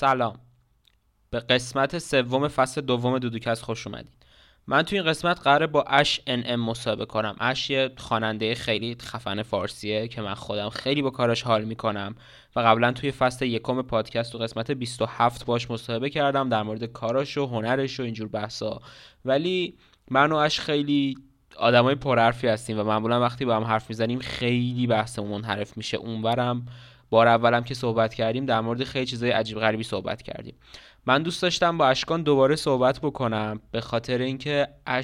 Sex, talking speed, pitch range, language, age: male, 175 wpm, 115-135 Hz, Persian, 20-39